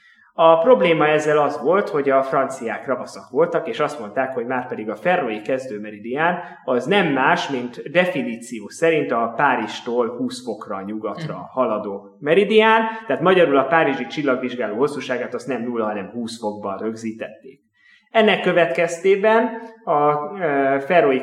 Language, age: Hungarian, 30-49